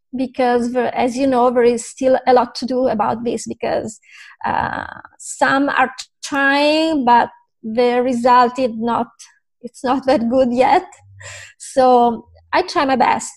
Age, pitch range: 20-39, 245-280 Hz